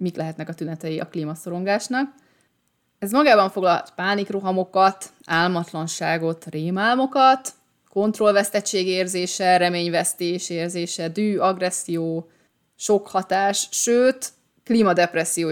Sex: female